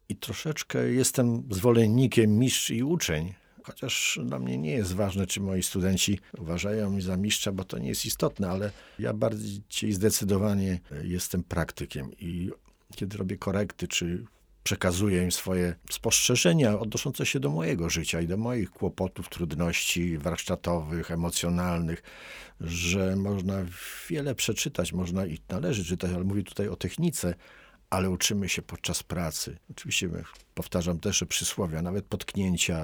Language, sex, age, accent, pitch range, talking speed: Polish, male, 50-69, native, 90-105 Hz, 140 wpm